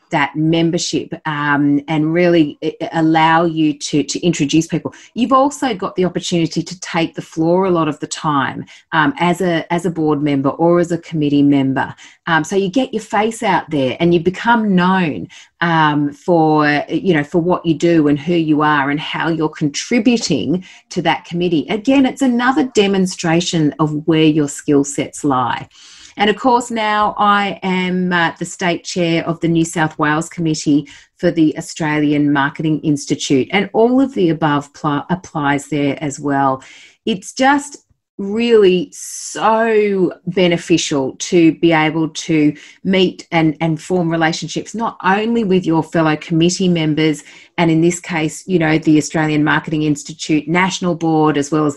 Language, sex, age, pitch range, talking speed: English, female, 30-49, 150-185 Hz, 165 wpm